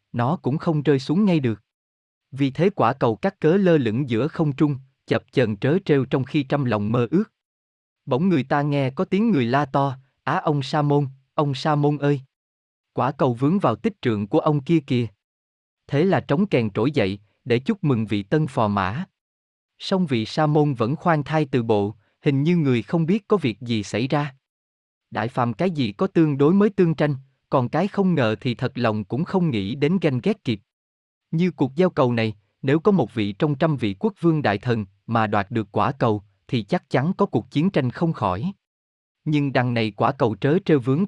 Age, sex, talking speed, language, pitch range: 20-39, male, 215 wpm, Vietnamese, 110-155 Hz